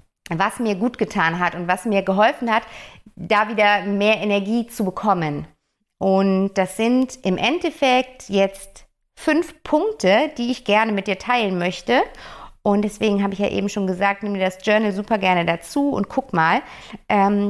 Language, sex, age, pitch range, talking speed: German, female, 50-69, 195-250 Hz, 170 wpm